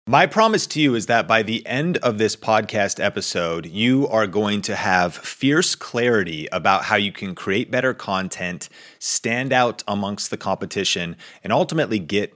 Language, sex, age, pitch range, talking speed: English, male, 30-49, 95-115 Hz, 170 wpm